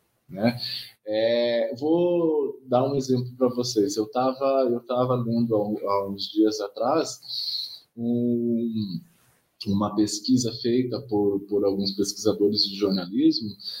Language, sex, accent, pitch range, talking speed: Portuguese, male, Brazilian, 110-150 Hz, 110 wpm